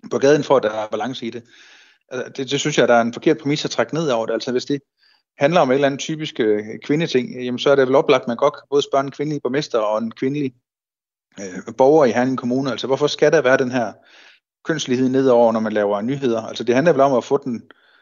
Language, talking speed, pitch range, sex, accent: Danish, 260 wpm, 115-145 Hz, male, native